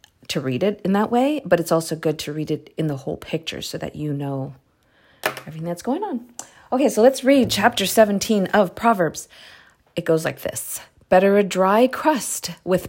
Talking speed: 195 wpm